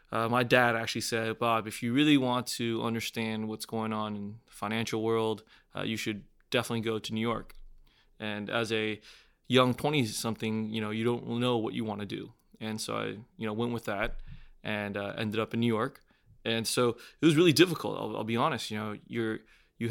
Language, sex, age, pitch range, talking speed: English, male, 20-39, 110-120 Hz, 215 wpm